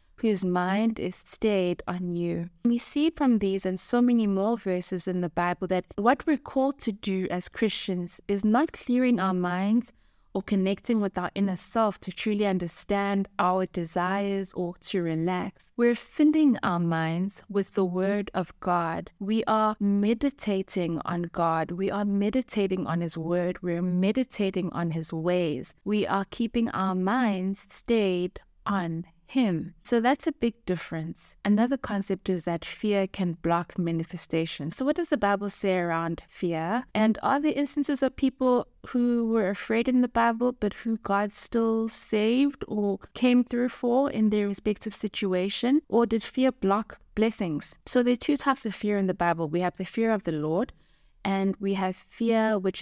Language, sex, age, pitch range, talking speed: English, female, 20-39, 180-230 Hz, 170 wpm